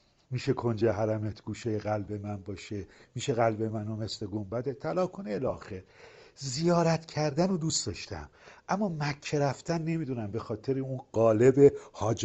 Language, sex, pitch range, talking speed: English, male, 105-140 Hz, 135 wpm